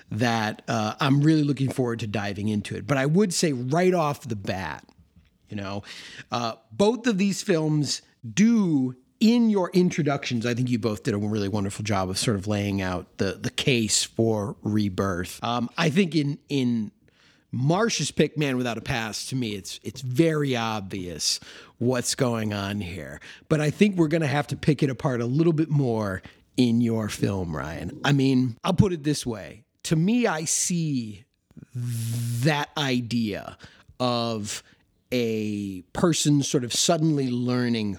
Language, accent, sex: English, American, male